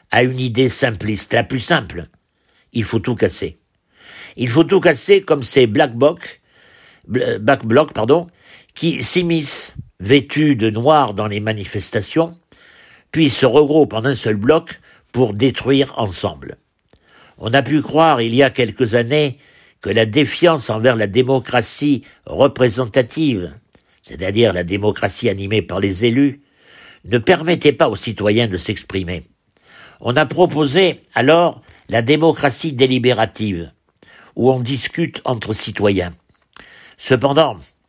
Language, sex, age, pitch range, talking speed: French, male, 60-79, 105-150 Hz, 130 wpm